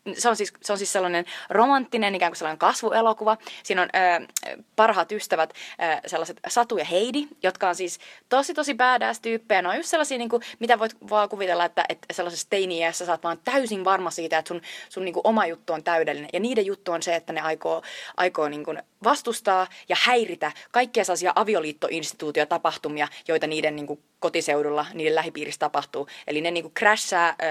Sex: female